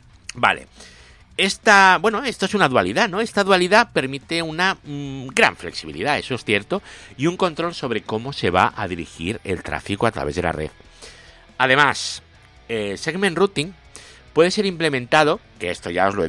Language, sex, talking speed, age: Spanish, male, 175 wpm, 60-79